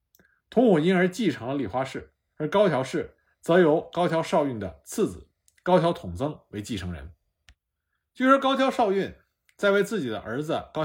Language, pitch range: Chinese, 120-195 Hz